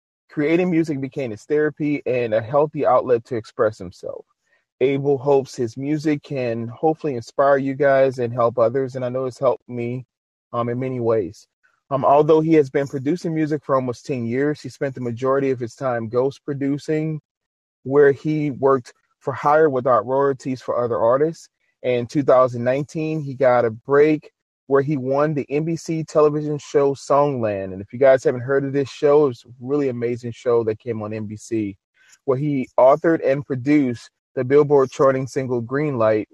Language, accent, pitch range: English, American, 120-150 Hz